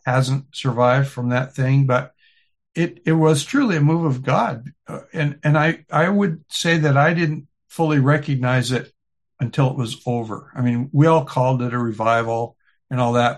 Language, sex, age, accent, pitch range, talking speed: English, male, 60-79, American, 120-145 Hz, 185 wpm